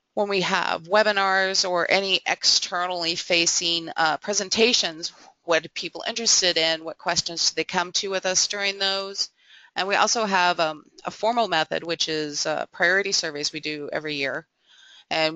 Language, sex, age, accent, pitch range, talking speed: English, female, 30-49, American, 165-195 Hz, 170 wpm